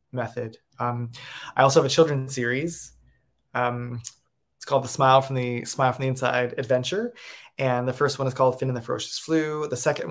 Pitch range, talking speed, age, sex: 120-145 Hz, 195 wpm, 20-39, male